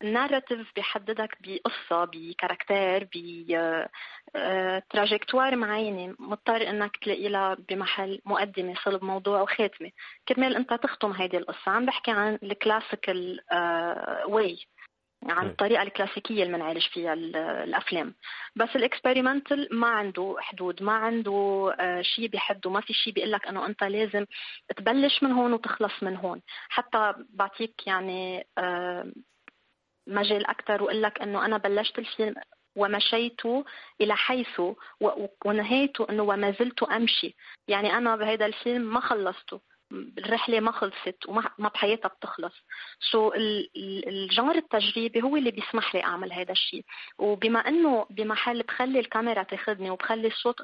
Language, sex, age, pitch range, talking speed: Arabic, female, 30-49, 190-230 Hz, 130 wpm